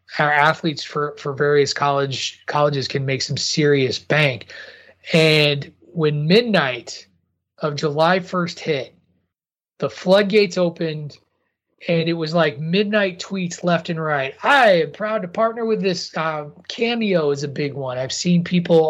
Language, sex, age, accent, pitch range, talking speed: English, male, 20-39, American, 155-210 Hz, 150 wpm